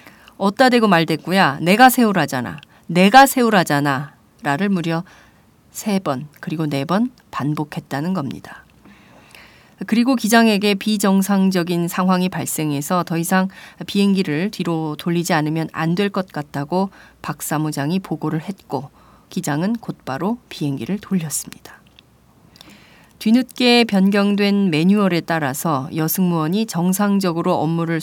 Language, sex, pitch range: Korean, female, 155-205 Hz